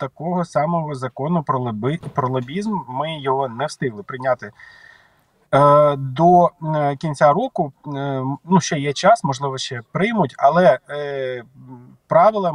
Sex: male